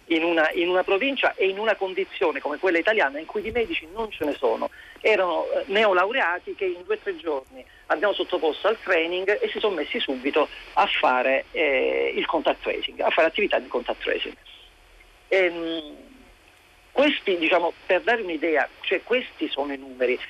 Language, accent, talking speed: Italian, native, 180 wpm